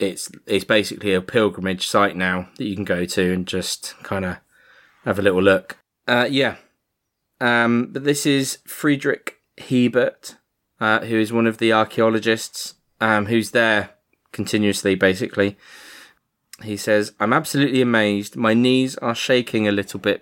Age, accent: 20-39, British